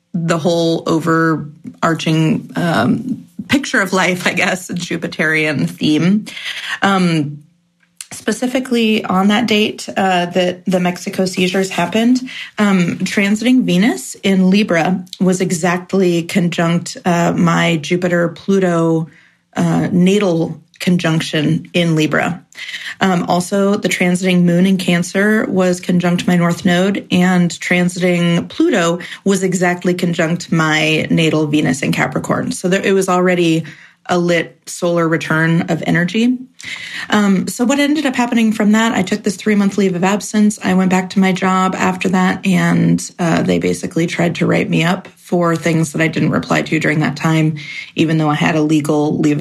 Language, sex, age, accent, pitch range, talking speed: English, female, 30-49, American, 170-195 Hz, 145 wpm